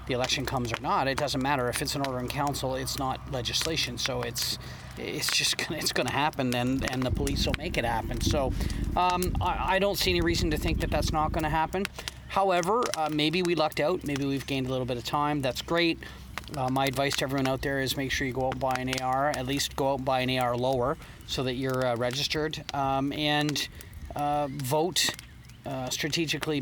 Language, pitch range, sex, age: English, 125-150 Hz, male, 40-59